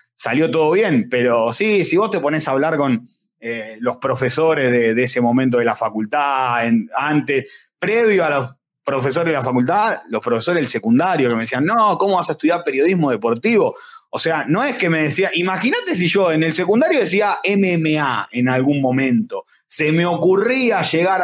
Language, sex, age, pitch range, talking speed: Spanish, male, 20-39, 130-195 Hz, 190 wpm